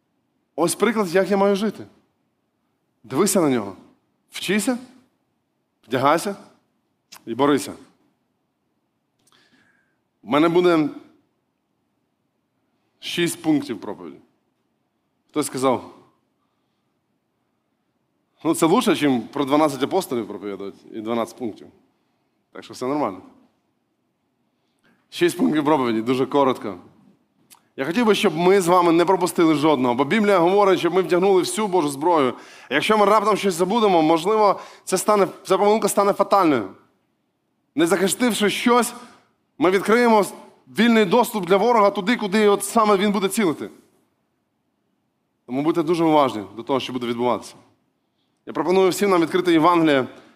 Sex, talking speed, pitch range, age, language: male, 120 wpm, 155-210 Hz, 20-39, Ukrainian